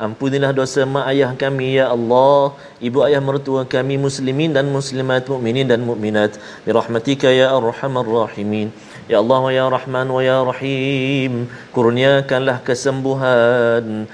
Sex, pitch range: male, 115-140 Hz